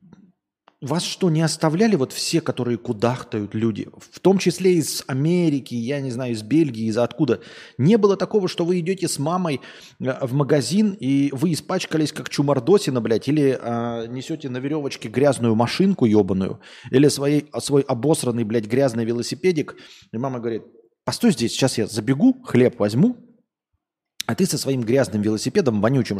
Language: Russian